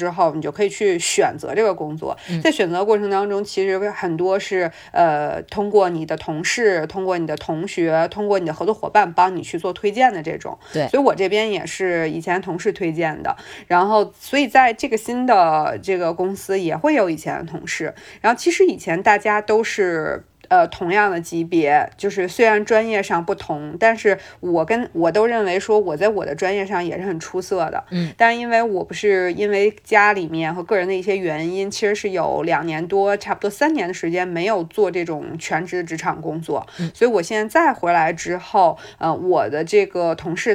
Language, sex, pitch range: Chinese, female, 170-215 Hz